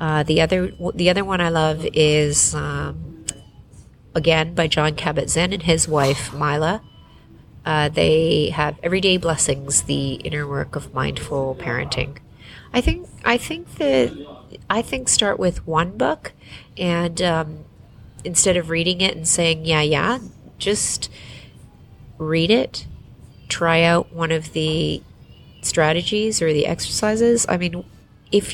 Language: English